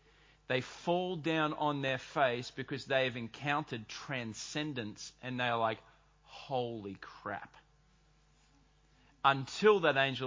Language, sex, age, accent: English, male, 40-59, Australian